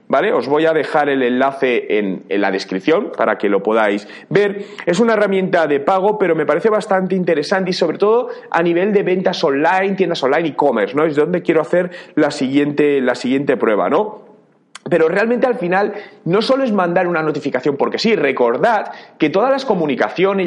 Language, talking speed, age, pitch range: Spanish, 195 wpm, 30-49, 160-215 Hz